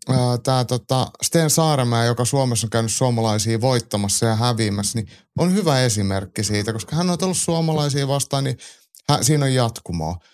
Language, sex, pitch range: Finnish, male, 115-150 Hz